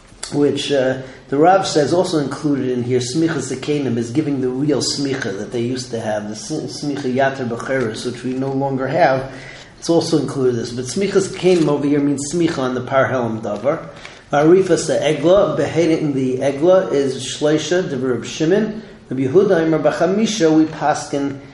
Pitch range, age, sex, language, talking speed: 125-155 Hz, 30-49, male, English, 165 wpm